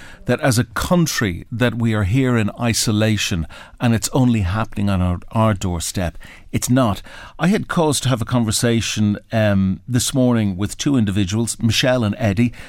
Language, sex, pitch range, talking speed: English, male, 100-125 Hz, 170 wpm